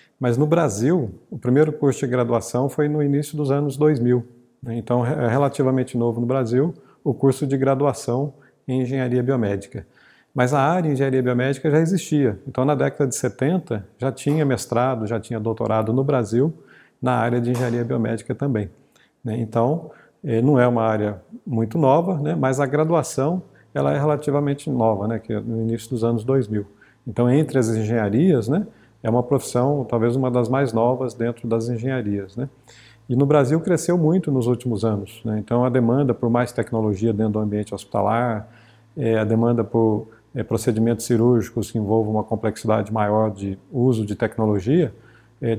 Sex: male